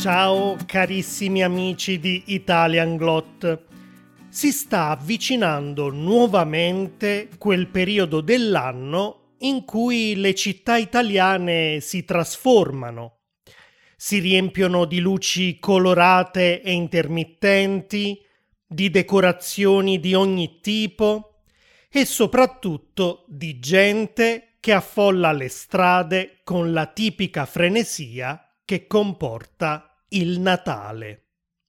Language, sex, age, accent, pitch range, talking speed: Italian, male, 30-49, native, 165-195 Hz, 90 wpm